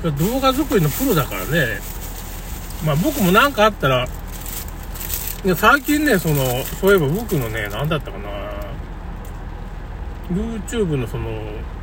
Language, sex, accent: Japanese, male, native